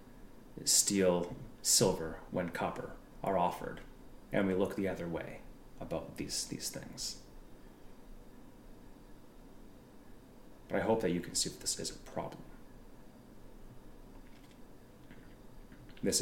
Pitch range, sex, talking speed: 90-120 Hz, male, 105 wpm